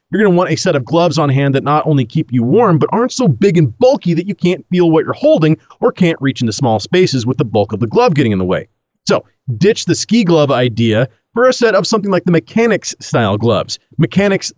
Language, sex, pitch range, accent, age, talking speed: English, male, 130-195 Hz, American, 40-59, 255 wpm